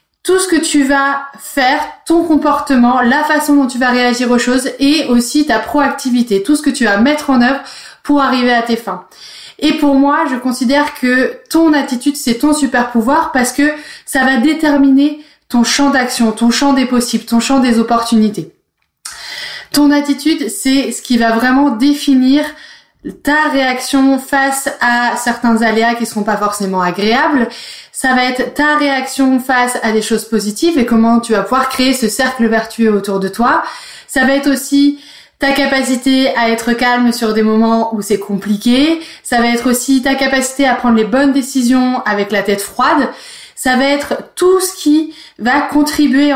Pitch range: 235-285 Hz